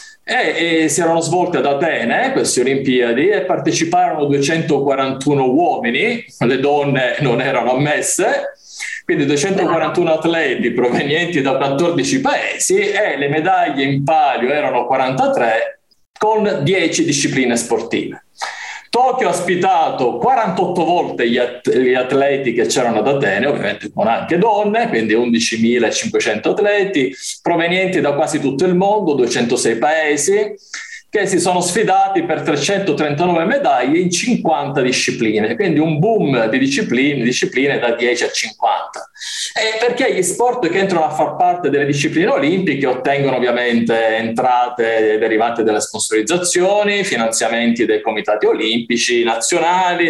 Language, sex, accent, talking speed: Italian, male, native, 125 wpm